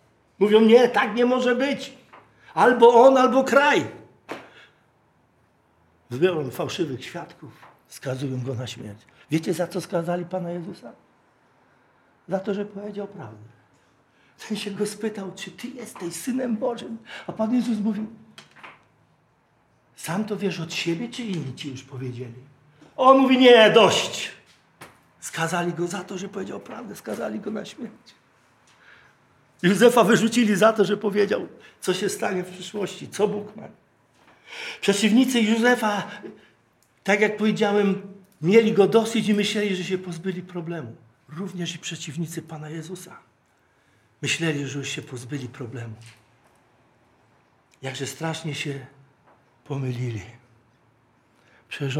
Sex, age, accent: male, 60-79, native